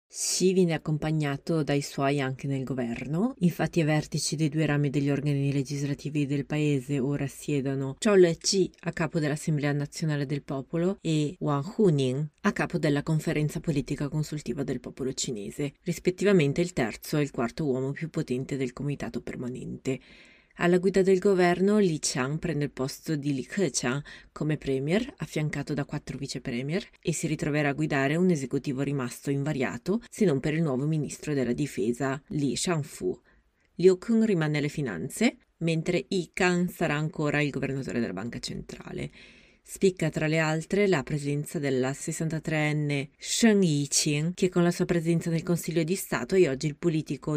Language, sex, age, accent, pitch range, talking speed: Italian, female, 30-49, native, 140-175 Hz, 165 wpm